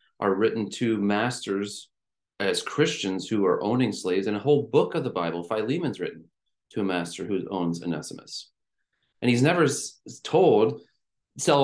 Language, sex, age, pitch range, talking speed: English, male, 30-49, 85-115 Hz, 155 wpm